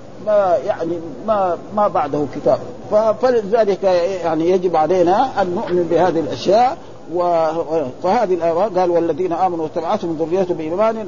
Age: 50-69